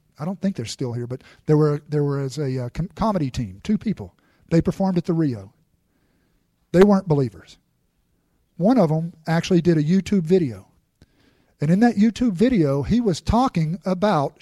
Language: English